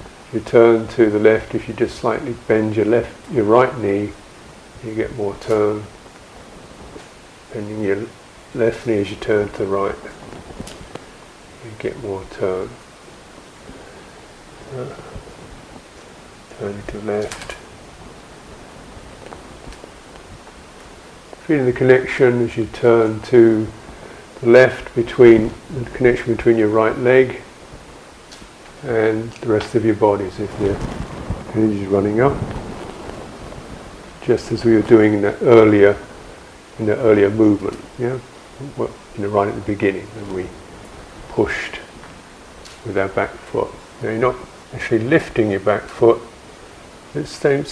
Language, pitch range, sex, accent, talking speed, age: English, 105-115 Hz, male, British, 130 wpm, 50-69